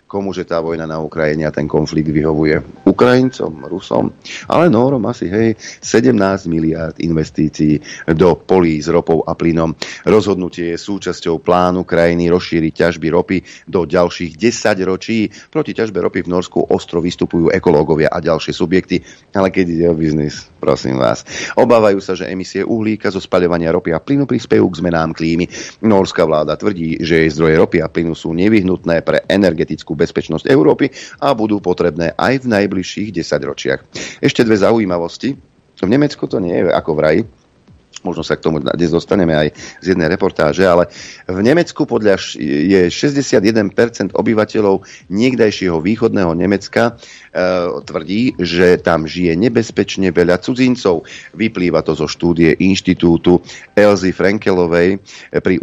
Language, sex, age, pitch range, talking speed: Slovak, male, 40-59, 80-100 Hz, 145 wpm